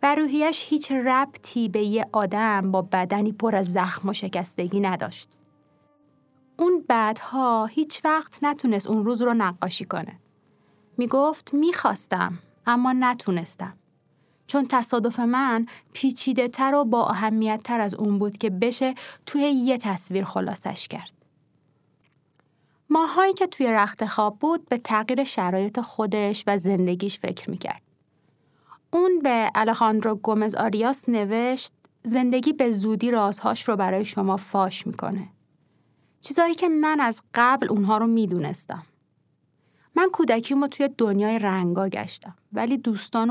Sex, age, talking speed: female, 30-49, 130 wpm